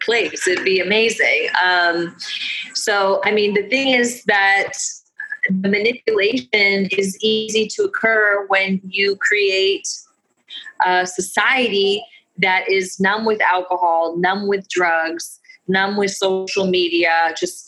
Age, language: 30-49, English